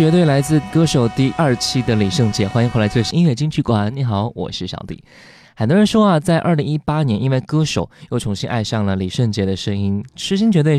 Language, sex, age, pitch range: Chinese, male, 20-39, 110-160 Hz